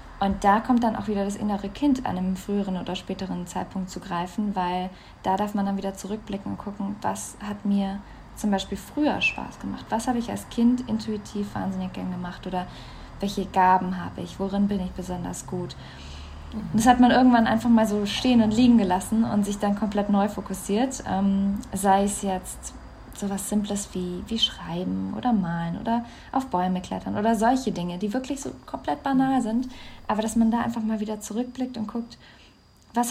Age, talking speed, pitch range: 20-39, 195 wpm, 185-220 Hz